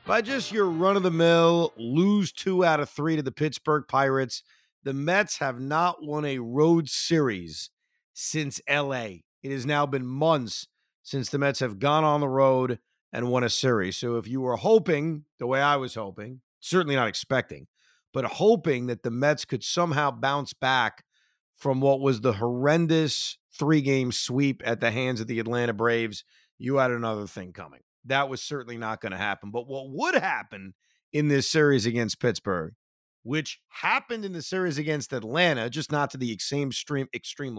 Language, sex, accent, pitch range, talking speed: English, male, American, 125-170 Hz, 175 wpm